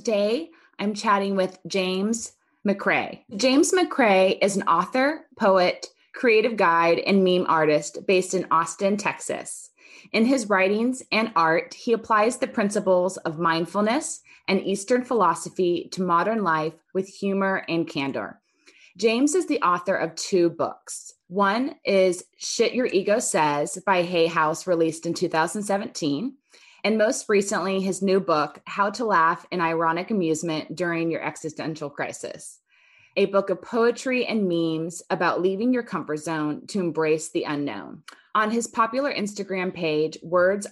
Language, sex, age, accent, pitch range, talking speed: English, female, 20-39, American, 165-220 Hz, 145 wpm